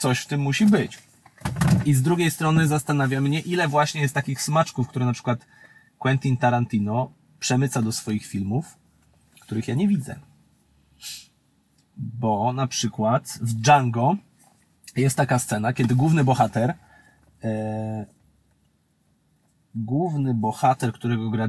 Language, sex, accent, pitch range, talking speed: Polish, male, native, 115-145 Hz, 125 wpm